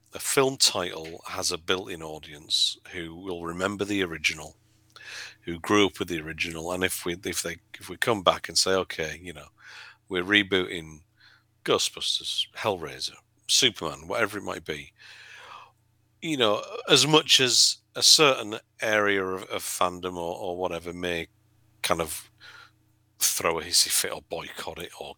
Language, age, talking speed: English, 50-69, 160 wpm